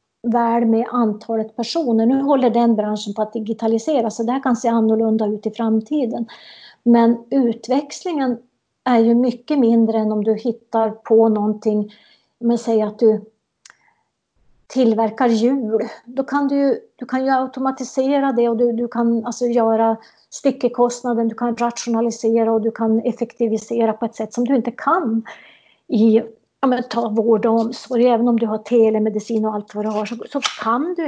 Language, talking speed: Swedish, 170 wpm